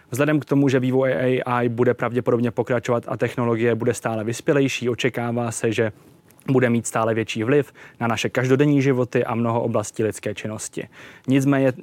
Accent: native